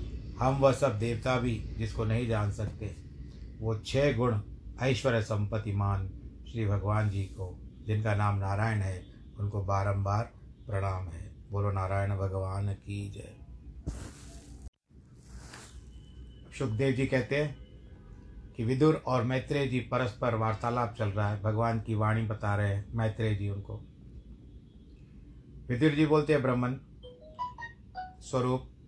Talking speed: 125 wpm